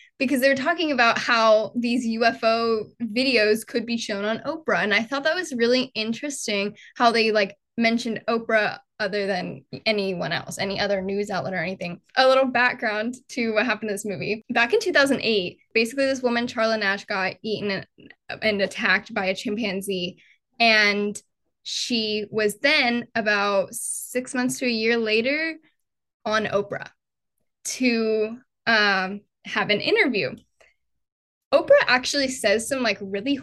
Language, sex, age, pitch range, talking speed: English, female, 10-29, 205-250 Hz, 155 wpm